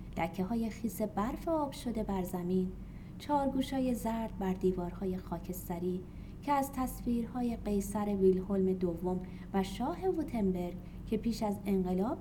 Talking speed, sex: 140 wpm, female